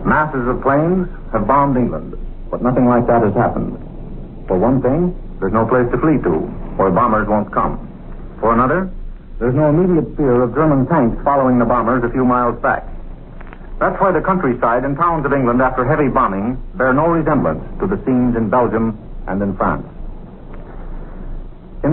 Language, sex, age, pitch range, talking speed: English, male, 70-89, 120-155 Hz, 175 wpm